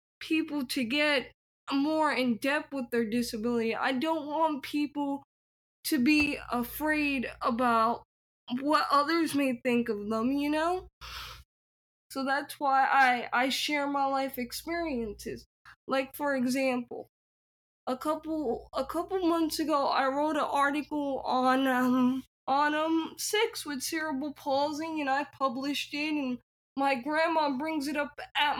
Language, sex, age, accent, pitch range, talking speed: English, female, 10-29, American, 260-310 Hz, 140 wpm